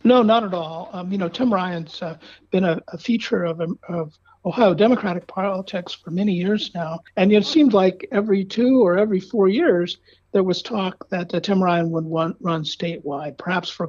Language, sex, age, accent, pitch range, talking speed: English, male, 50-69, American, 170-210 Hz, 205 wpm